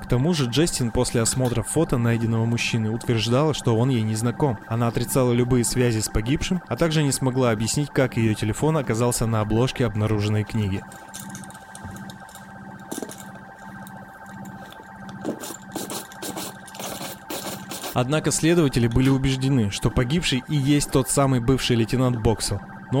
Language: Russian